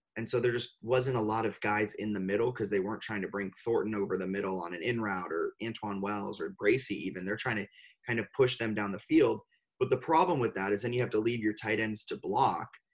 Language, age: English, 20-39